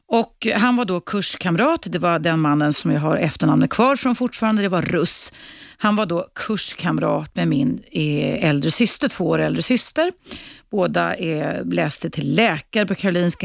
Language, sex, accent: Swedish, female, native